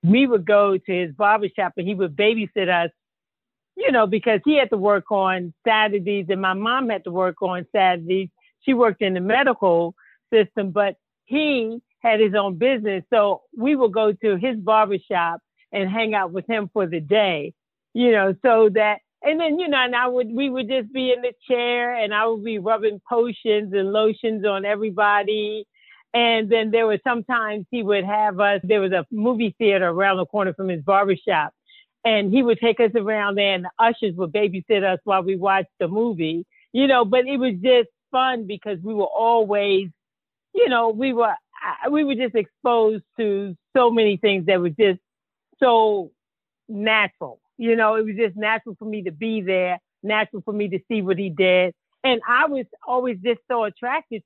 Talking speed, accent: 195 wpm, American